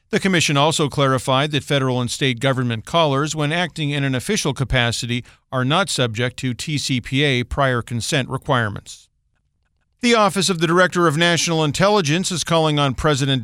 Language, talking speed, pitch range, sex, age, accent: English, 160 wpm, 130-170 Hz, male, 50-69, American